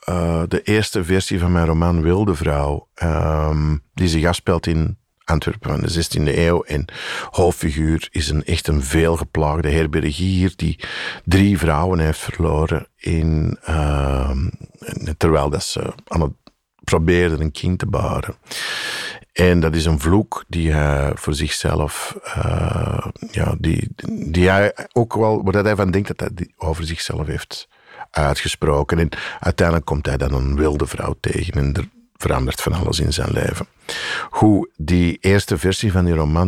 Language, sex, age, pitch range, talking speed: Dutch, male, 50-69, 75-90 Hz, 160 wpm